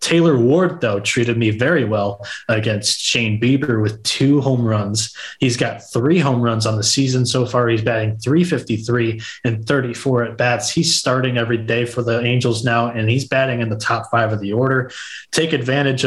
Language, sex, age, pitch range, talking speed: English, male, 20-39, 110-130 Hz, 190 wpm